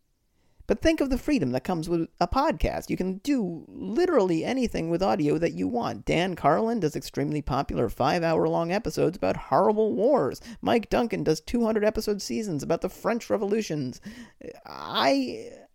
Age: 40-59